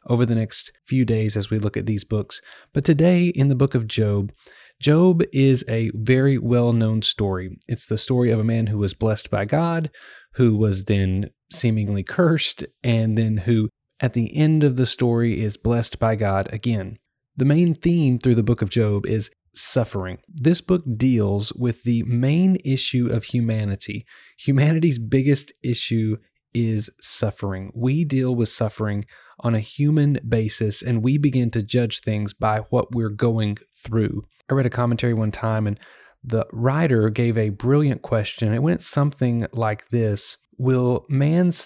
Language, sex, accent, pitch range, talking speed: English, male, American, 110-135 Hz, 170 wpm